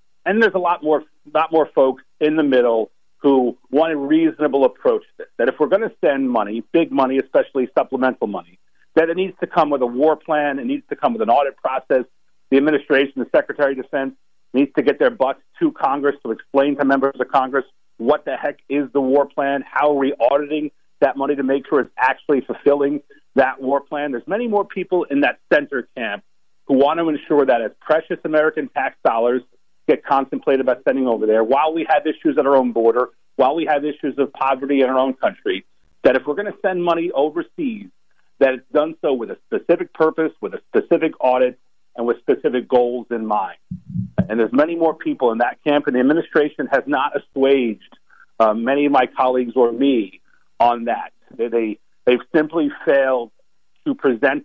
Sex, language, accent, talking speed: male, English, American, 205 wpm